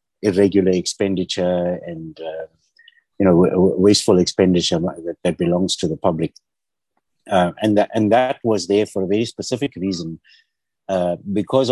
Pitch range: 95-115 Hz